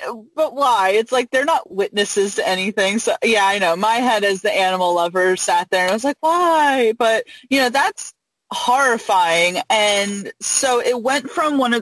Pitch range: 185-225 Hz